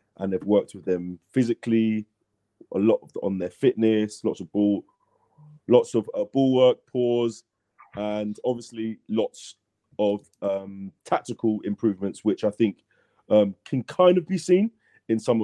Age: 30-49